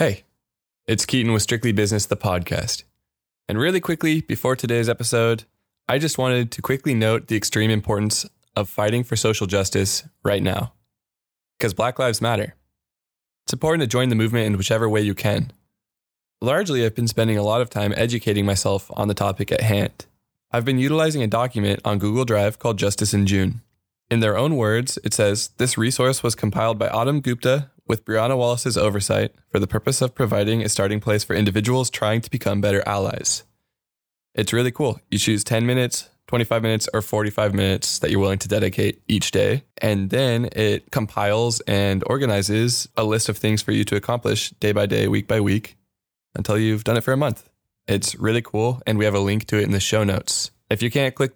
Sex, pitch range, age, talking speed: male, 100-120 Hz, 20-39, 195 wpm